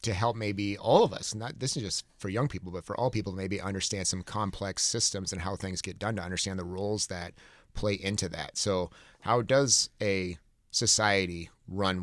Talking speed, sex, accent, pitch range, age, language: 205 wpm, male, American, 95-115 Hz, 30-49, English